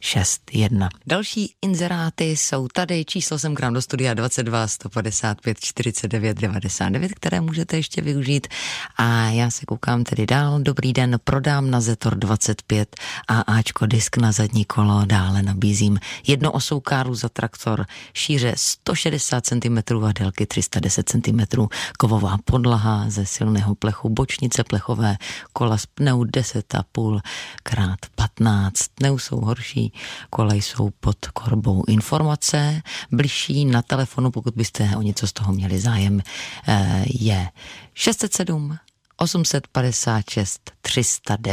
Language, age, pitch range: Czech, 30-49, 105-130 Hz